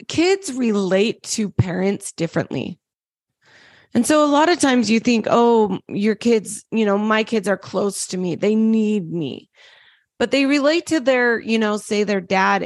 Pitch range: 195-240 Hz